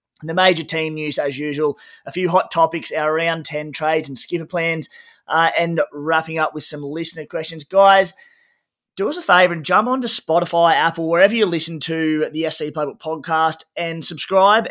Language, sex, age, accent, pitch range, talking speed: English, male, 20-39, Australian, 140-170 Hz, 190 wpm